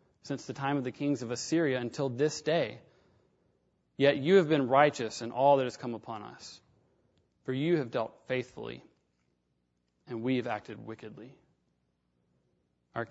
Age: 30-49